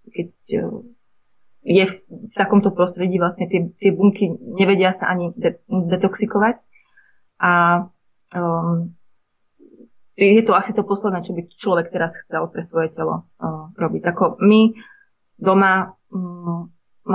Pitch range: 170-205 Hz